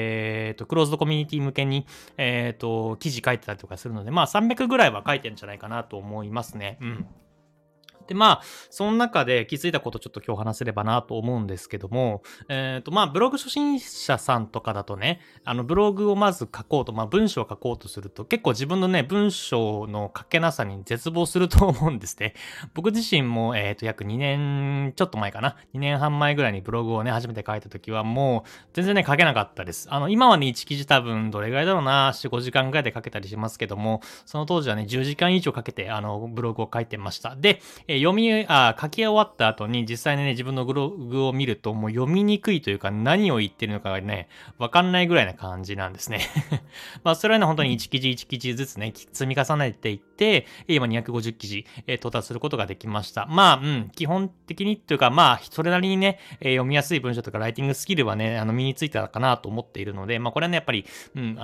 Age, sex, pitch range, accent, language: 20-39, male, 110-160 Hz, native, Japanese